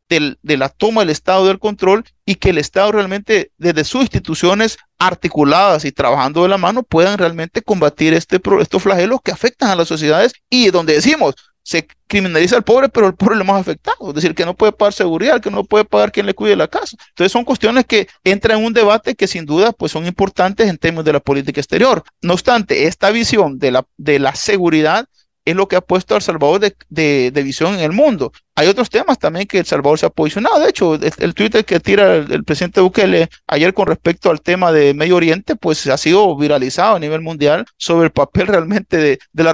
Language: Spanish